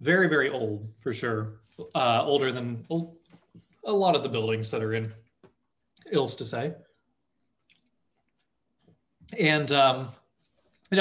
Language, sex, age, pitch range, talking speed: English, male, 20-39, 110-145 Hz, 125 wpm